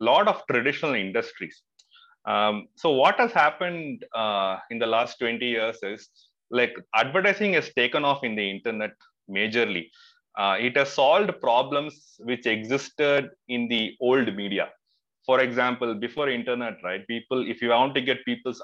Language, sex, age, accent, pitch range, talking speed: English, male, 30-49, Indian, 115-145 Hz, 155 wpm